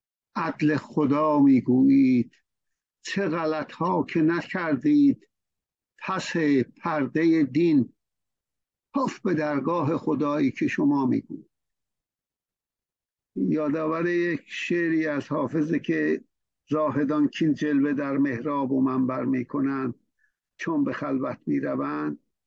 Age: 60-79